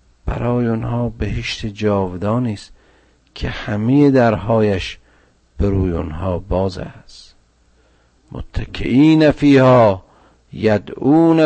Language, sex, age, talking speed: Persian, male, 50-69, 80 wpm